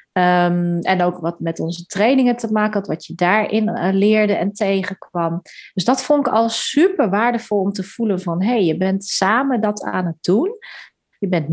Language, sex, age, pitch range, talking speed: Dutch, female, 30-49, 170-215 Hz, 185 wpm